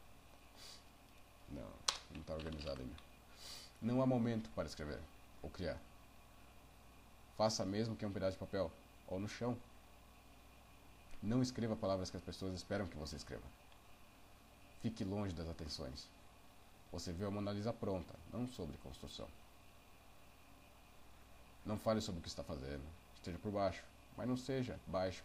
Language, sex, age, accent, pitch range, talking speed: Portuguese, male, 40-59, Brazilian, 85-105 Hz, 140 wpm